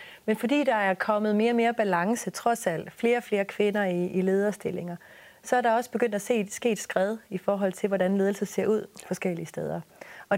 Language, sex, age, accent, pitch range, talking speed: Danish, female, 30-49, native, 185-230 Hz, 220 wpm